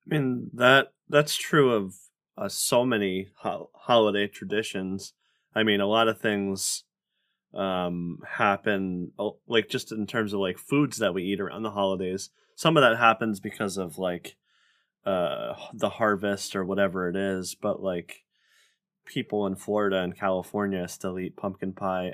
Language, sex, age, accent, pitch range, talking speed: English, male, 20-39, American, 95-130 Hz, 155 wpm